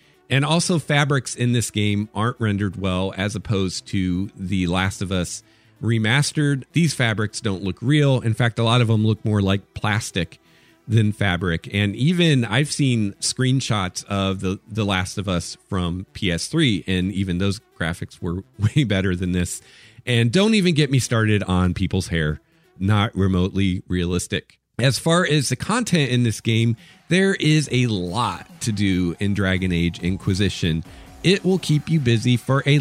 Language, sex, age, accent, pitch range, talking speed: English, male, 40-59, American, 95-130 Hz, 170 wpm